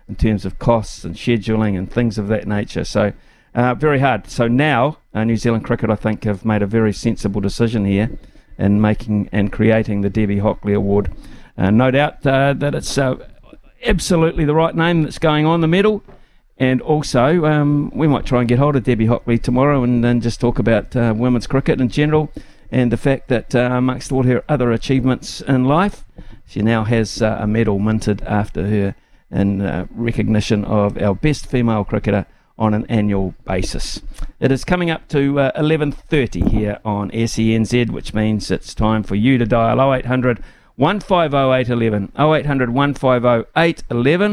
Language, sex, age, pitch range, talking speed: English, male, 50-69, 110-145 Hz, 180 wpm